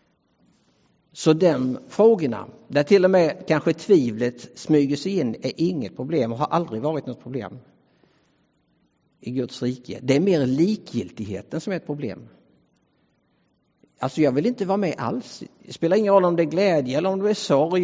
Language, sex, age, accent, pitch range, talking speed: English, male, 60-79, Norwegian, 125-165 Hz, 175 wpm